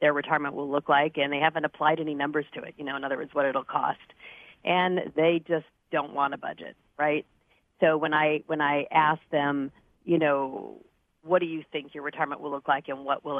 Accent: American